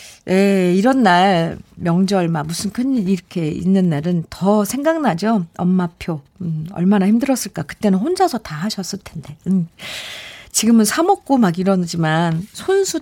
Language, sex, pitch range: Korean, female, 175-260 Hz